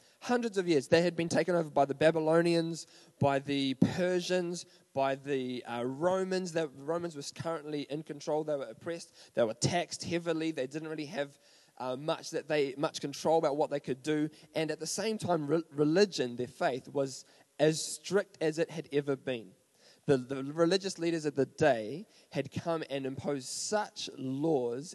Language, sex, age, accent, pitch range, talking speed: English, male, 20-39, Australian, 140-170 Hz, 175 wpm